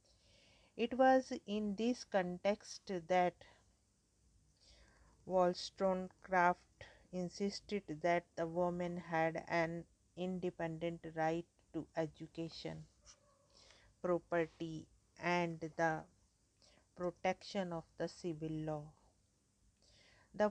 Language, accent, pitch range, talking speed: English, Indian, 160-185 Hz, 75 wpm